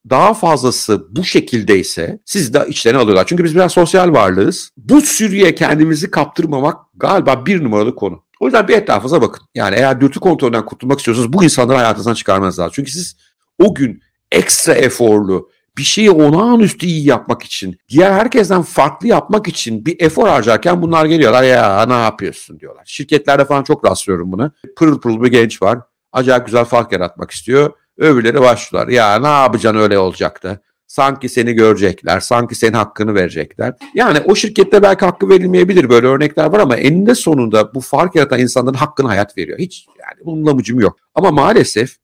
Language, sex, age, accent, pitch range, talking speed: Turkish, male, 60-79, native, 115-170 Hz, 165 wpm